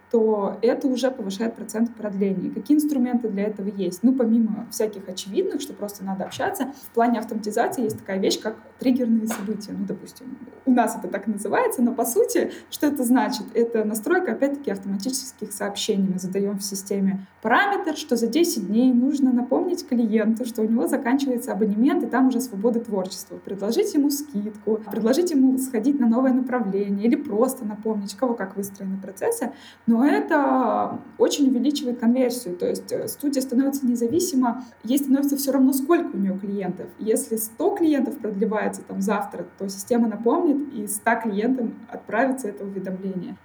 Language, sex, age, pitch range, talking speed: Russian, female, 20-39, 210-260 Hz, 160 wpm